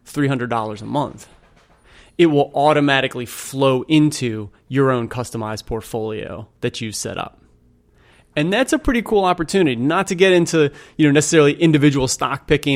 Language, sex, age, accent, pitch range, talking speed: English, male, 30-49, American, 120-150 Hz, 145 wpm